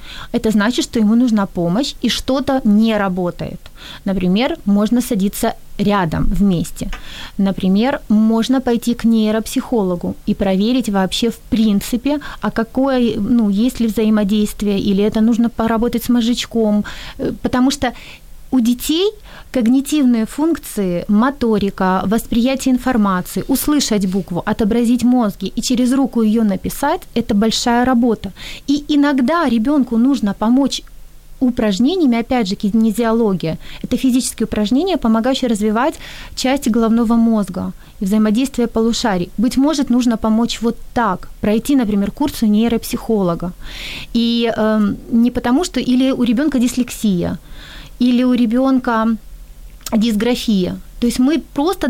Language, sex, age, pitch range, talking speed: Ukrainian, female, 30-49, 210-255 Hz, 120 wpm